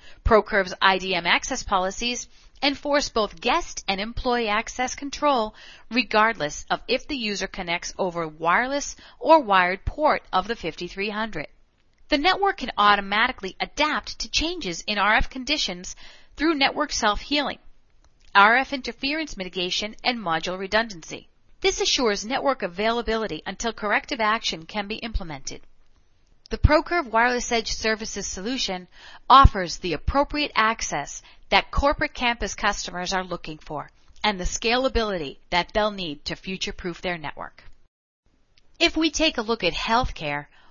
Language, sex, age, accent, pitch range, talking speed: English, female, 40-59, American, 190-260 Hz, 130 wpm